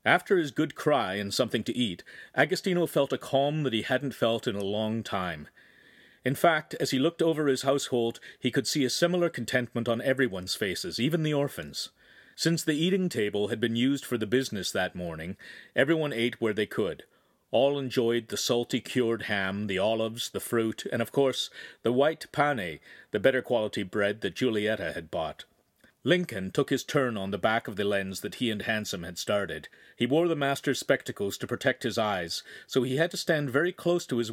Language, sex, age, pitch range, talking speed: English, male, 40-59, 110-145 Hz, 200 wpm